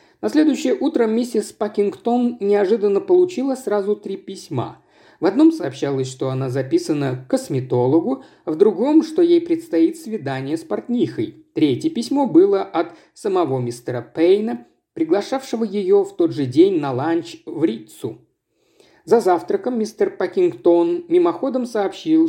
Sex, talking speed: male, 135 wpm